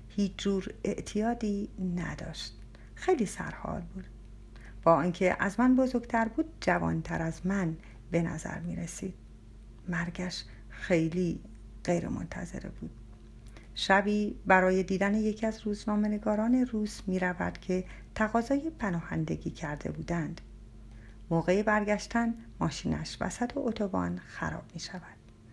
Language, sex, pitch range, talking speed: Persian, female, 165-225 Hz, 105 wpm